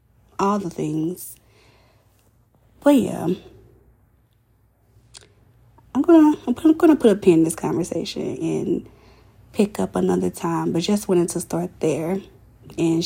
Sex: female